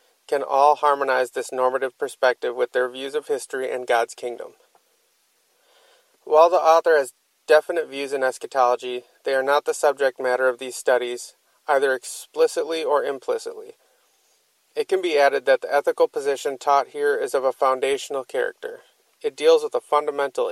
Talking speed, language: 160 wpm, English